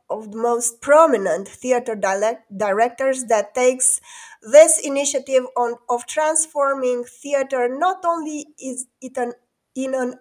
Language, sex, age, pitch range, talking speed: English, female, 20-39, 235-315 Hz, 125 wpm